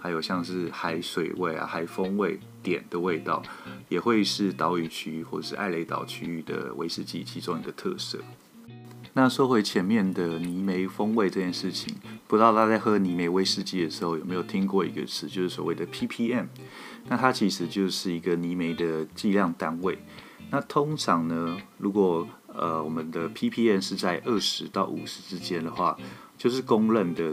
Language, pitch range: Chinese, 85-110 Hz